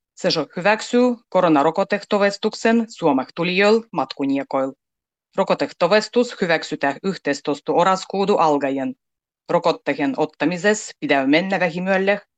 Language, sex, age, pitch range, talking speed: Finnish, female, 30-49, 150-210 Hz, 80 wpm